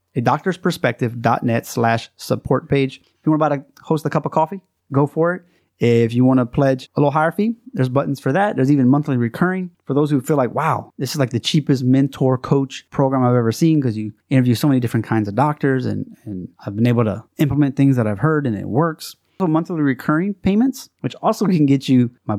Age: 30-49